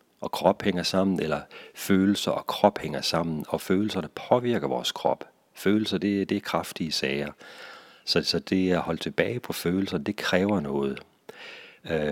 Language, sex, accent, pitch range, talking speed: Danish, male, native, 80-100 Hz, 170 wpm